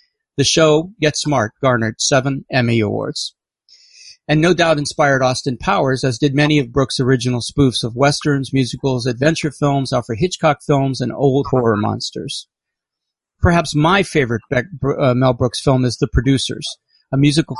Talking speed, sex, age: 150 wpm, male, 50-69